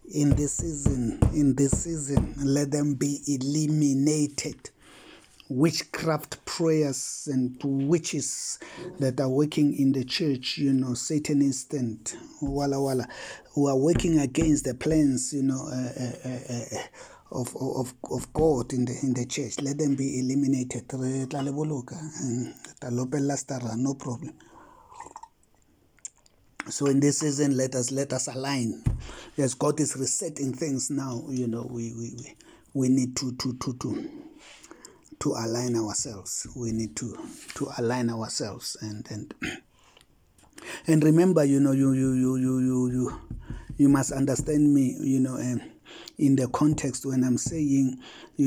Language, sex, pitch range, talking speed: English, male, 130-145 Hz, 135 wpm